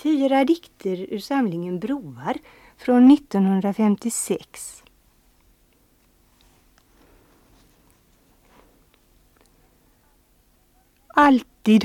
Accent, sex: native, female